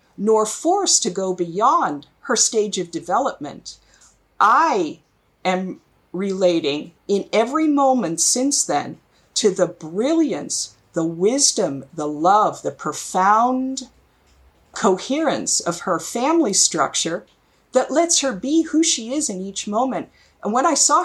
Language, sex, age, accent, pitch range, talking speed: English, female, 50-69, American, 170-245 Hz, 130 wpm